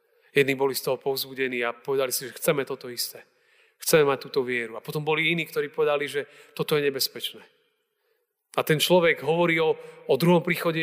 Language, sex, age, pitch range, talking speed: Slovak, male, 40-59, 155-205 Hz, 190 wpm